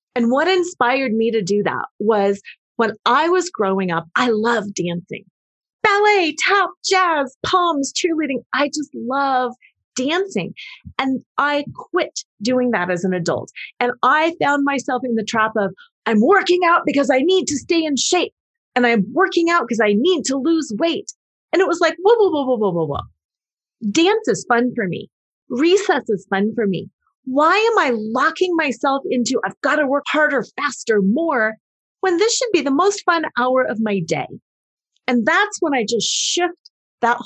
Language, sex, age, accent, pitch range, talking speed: English, female, 30-49, American, 225-330 Hz, 180 wpm